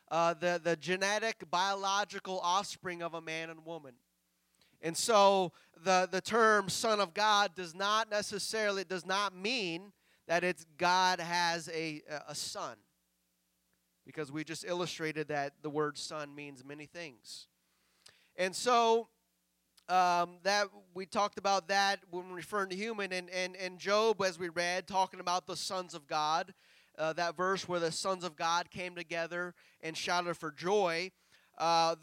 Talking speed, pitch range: 155 wpm, 160-195 Hz